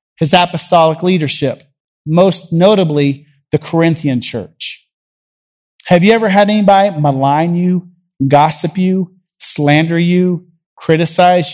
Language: English